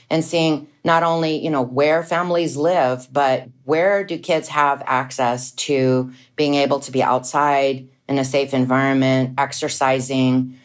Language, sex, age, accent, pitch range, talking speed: English, female, 40-59, American, 130-150 Hz, 145 wpm